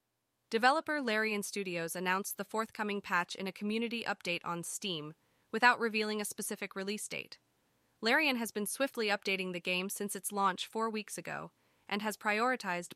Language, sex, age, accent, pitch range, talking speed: English, female, 20-39, American, 175-220 Hz, 160 wpm